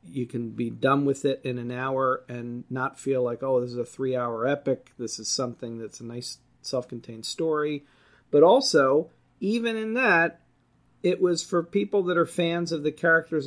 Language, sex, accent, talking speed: English, male, American, 185 wpm